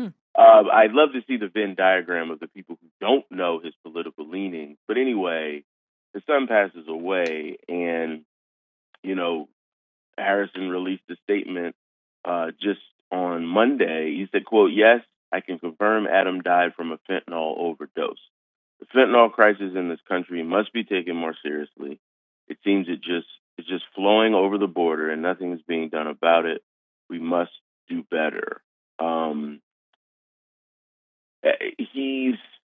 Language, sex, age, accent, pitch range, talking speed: English, male, 30-49, American, 80-100 Hz, 150 wpm